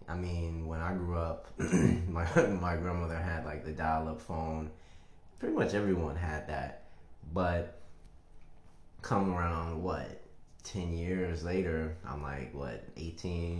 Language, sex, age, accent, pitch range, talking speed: English, male, 20-39, American, 80-90 Hz, 130 wpm